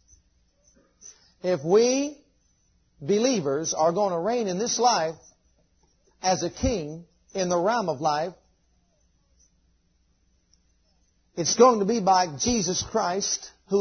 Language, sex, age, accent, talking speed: English, male, 50-69, American, 115 wpm